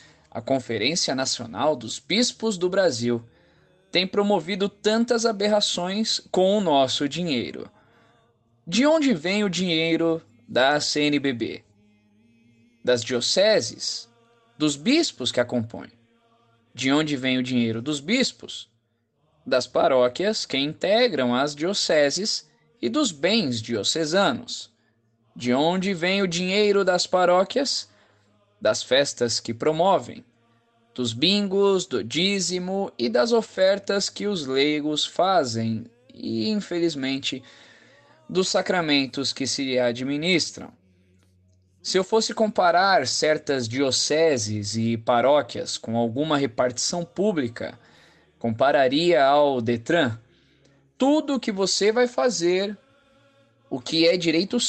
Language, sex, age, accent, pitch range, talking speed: Portuguese, male, 20-39, Brazilian, 115-190 Hz, 110 wpm